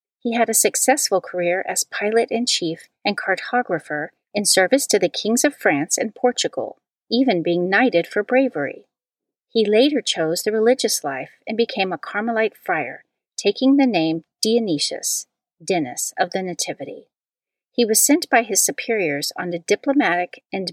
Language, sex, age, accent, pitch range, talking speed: English, female, 40-59, American, 175-240 Hz, 155 wpm